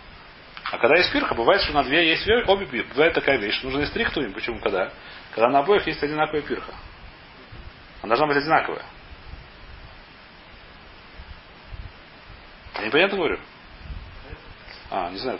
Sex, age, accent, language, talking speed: male, 30-49, native, Russian, 135 wpm